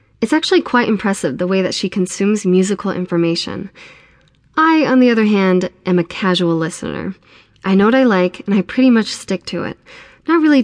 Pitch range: 175-215 Hz